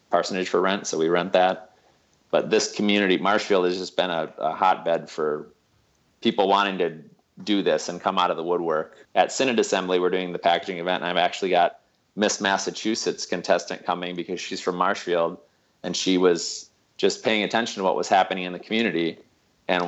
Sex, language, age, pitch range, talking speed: male, English, 30-49, 85-95 Hz, 190 wpm